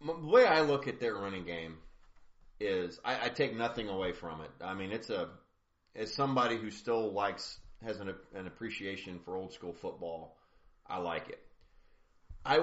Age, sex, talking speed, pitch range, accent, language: 30-49, male, 175 wpm, 90-115 Hz, American, English